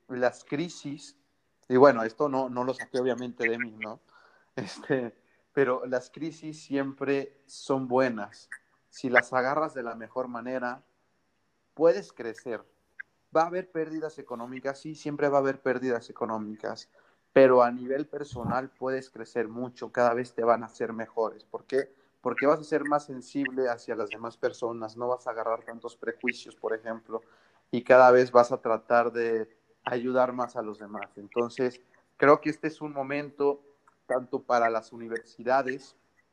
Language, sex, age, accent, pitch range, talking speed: Spanish, male, 30-49, Mexican, 115-135 Hz, 160 wpm